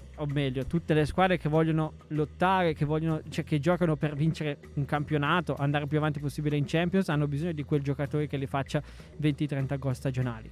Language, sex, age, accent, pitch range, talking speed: Italian, male, 20-39, native, 145-175 Hz, 195 wpm